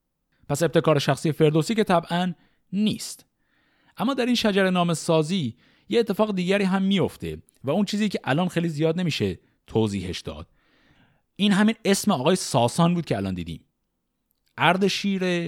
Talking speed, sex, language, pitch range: 145 wpm, male, Persian, 120-180 Hz